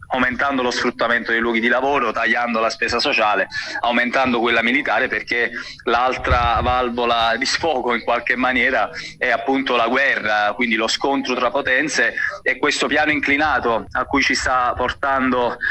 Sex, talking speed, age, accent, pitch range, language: male, 155 wpm, 20-39, native, 120-135 Hz, Italian